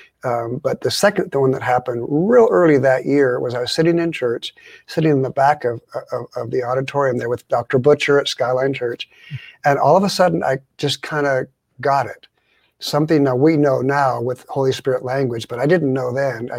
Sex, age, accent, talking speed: male, 50-69, American, 215 wpm